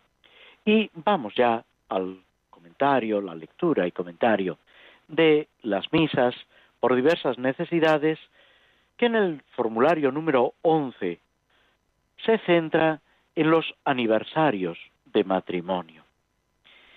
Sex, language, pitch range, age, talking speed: male, Spanish, 100-160 Hz, 50-69, 100 wpm